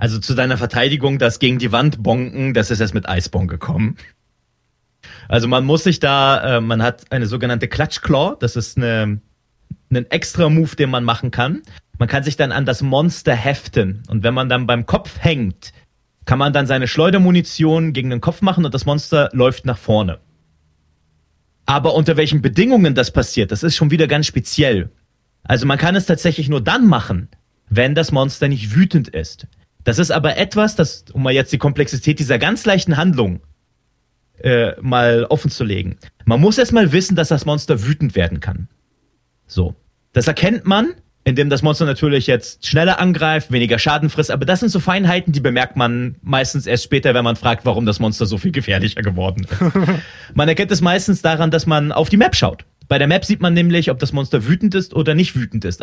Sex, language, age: male, German, 30-49